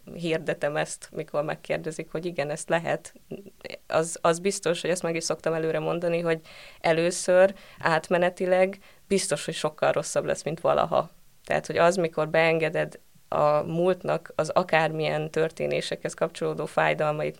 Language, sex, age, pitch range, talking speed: Hungarian, female, 20-39, 155-175 Hz, 140 wpm